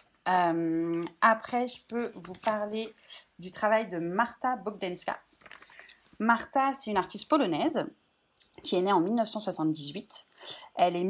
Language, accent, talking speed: French, French, 125 wpm